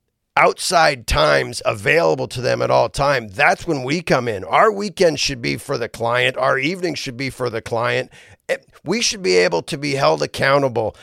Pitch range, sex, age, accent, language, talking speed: 120-165 Hz, male, 40-59, American, English, 190 wpm